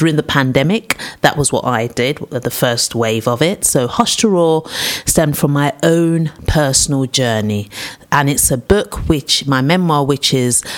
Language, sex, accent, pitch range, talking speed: English, female, British, 130-185 Hz, 180 wpm